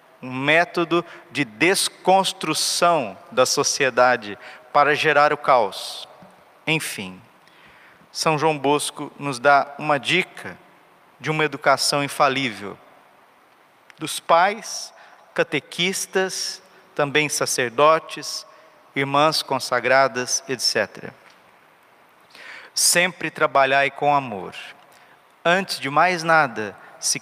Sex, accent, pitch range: male, Brazilian, 140-165 Hz